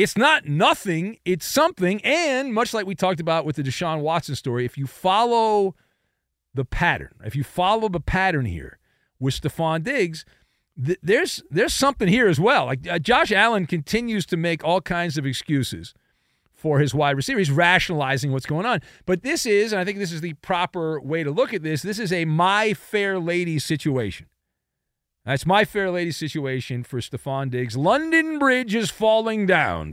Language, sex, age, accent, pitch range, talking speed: English, male, 40-59, American, 145-200 Hz, 185 wpm